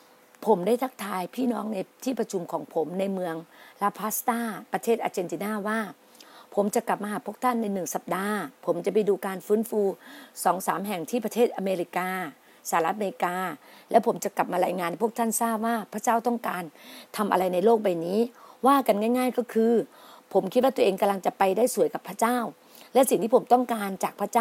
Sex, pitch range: female, 200-245 Hz